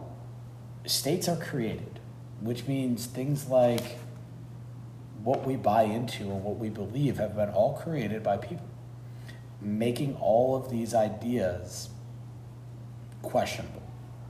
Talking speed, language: 115 wpm, English